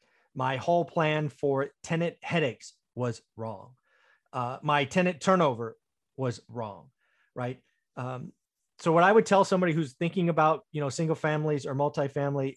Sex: male